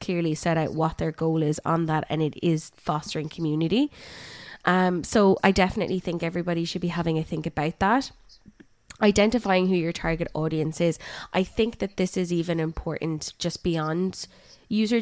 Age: 20-39